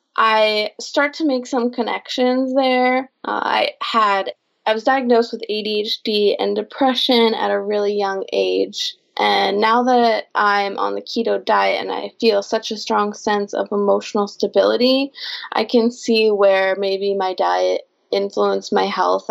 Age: 20-39